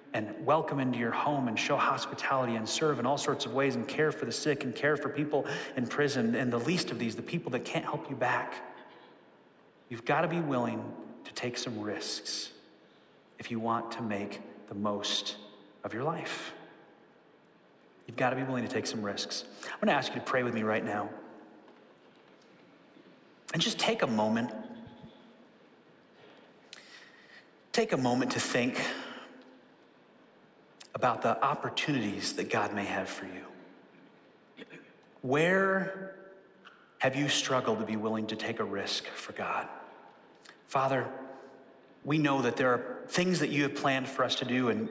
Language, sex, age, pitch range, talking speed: English, male, 30-49, 120-150 Hz, 165 wpm